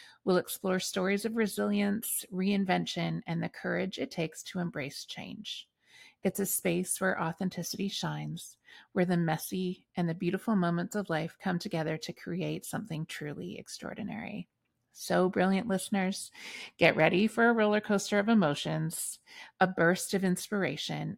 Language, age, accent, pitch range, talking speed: English, 30-49, American, 175-215 Hz, 145 wpm